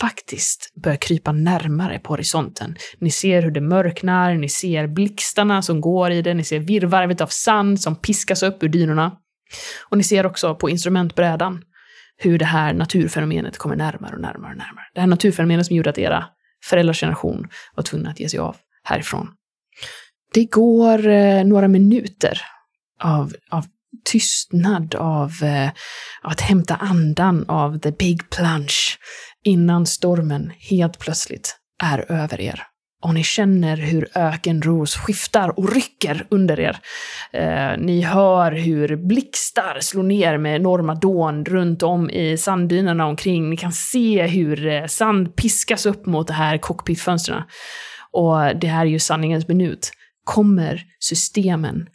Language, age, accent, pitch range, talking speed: Swedish, 20-39, native, 160-195 Hz, 145 wpm